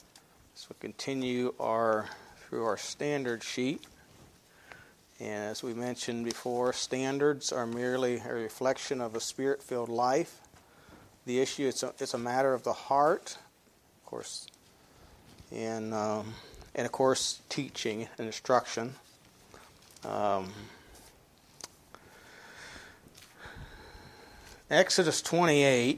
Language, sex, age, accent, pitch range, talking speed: English, male, 40-59, American, 115-145 Hz, 105 wpm